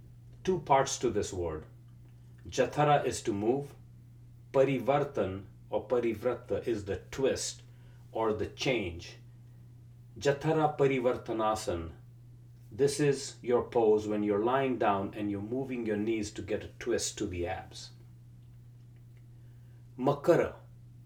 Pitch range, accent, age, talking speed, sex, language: 115-125 Hz, Indian, 40-59, 115 wpm, male, English